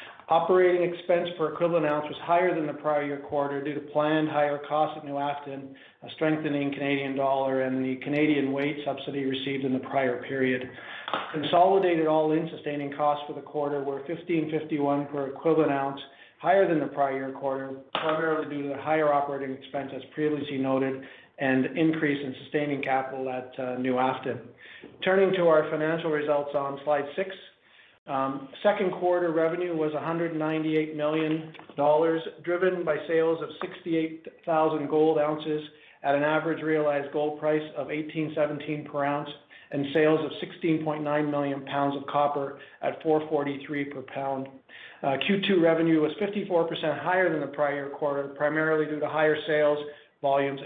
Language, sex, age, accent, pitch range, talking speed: English, male, 40-59, American, 140-155 Hz, 155 wpm